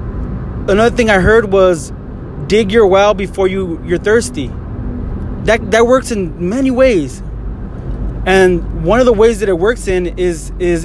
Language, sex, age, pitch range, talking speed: English, male, 20-39, 180-220 Hz, 160 wpm